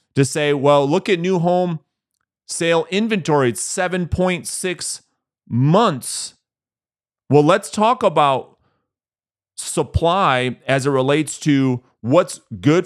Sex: male